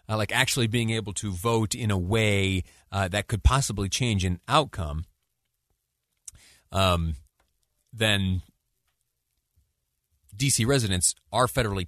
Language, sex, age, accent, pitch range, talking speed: English, male, 40-59, American, 90-130 Hz, 115 wpm